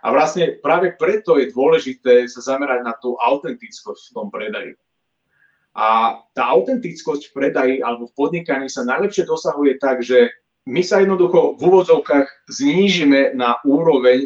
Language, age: Slovak, 30-49